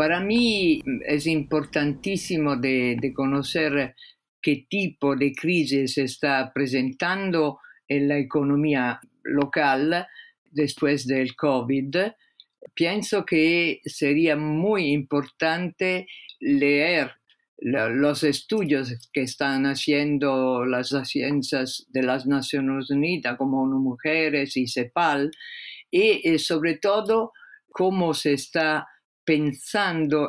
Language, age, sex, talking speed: Spanish, 50-69, female, 100 wpm